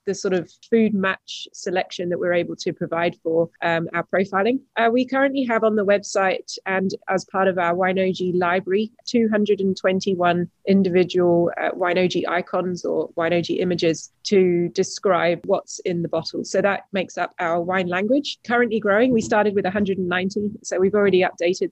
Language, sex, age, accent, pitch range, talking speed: English, female, 20-39, British, 175-205 Hz, 165 wpm